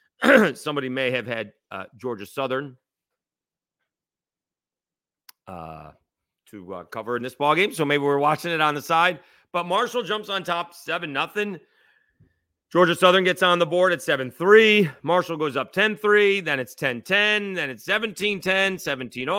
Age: 40-59